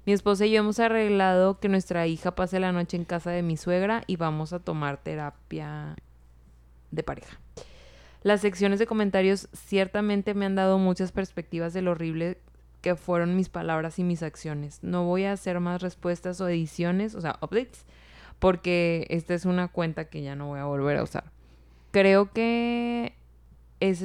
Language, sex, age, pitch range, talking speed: Spanish, female, 20-39, 150-190 Hz, 175 wpm